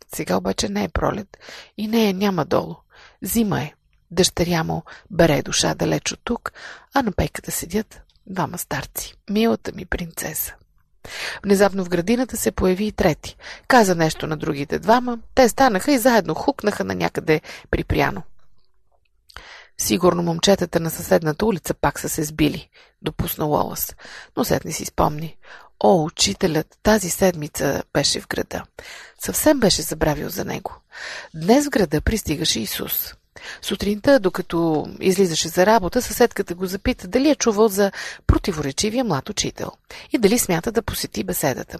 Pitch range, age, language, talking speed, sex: 160-230 Hz, 30-49, Bulgarian, 145 wpm, female